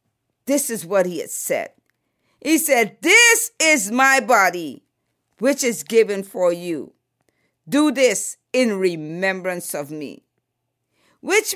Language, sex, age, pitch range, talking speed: English, female, 50-69, 235-320 Hz, 125 wpm